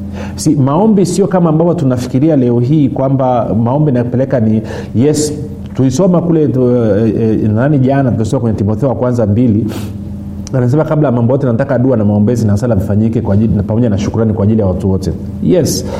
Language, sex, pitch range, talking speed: Swahili, male, 100-145 Hz, 180 wpm